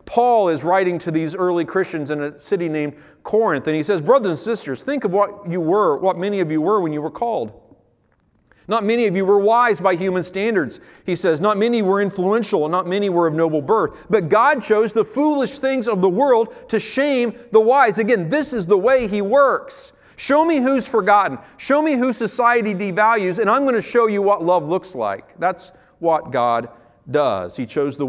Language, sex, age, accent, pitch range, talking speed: English, male, 40-59, American, 140-220 Hz, 215 wpm